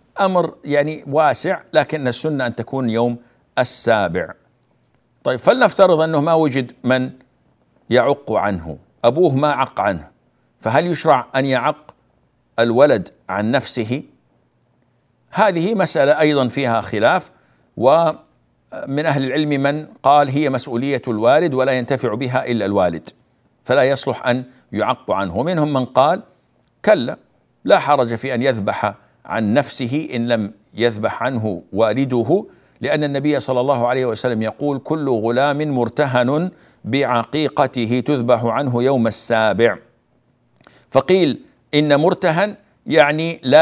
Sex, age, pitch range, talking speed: male, 60-79, 120-150 Hz, 120 wpm